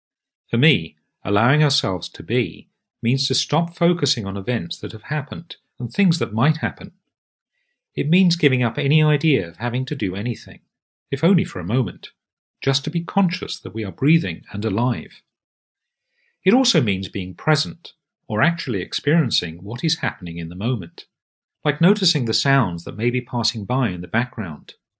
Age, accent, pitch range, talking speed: 40-59, British, 105-150 Hz, 175 wpm